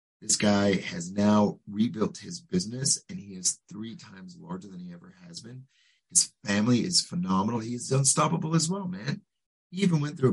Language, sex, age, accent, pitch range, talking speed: English, male, 30-49, American, 105-165 Hz, 180 wpm